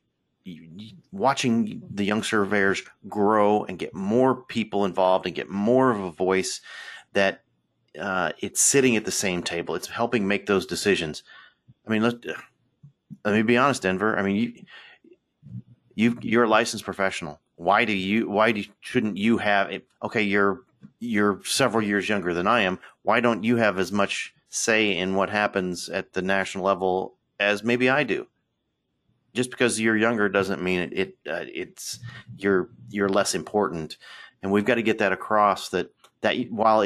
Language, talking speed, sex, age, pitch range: English, 165 wpm, male, 40-59, 100-120 Hz